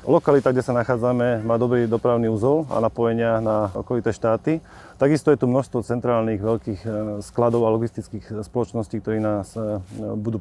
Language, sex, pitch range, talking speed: Slovak, male, 110-125 Hz, 150 wpm